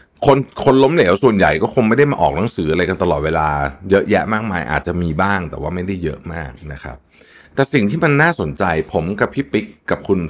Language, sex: Thai, male